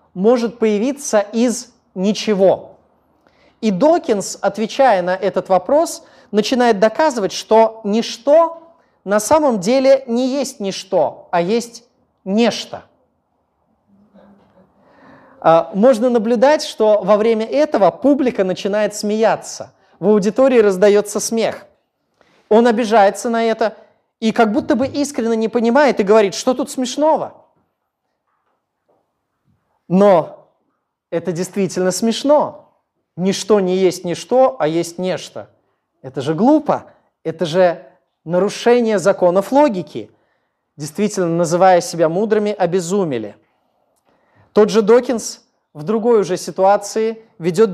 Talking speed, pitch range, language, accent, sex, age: 105 wpm, 185-240 Hz, Russian, native, male, 30-49